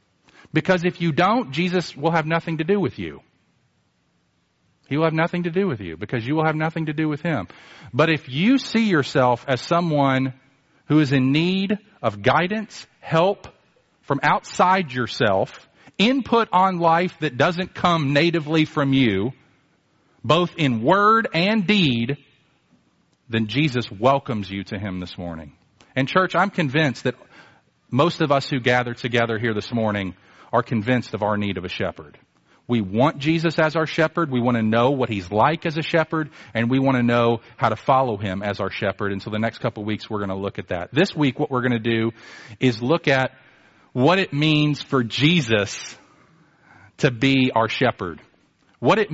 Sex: male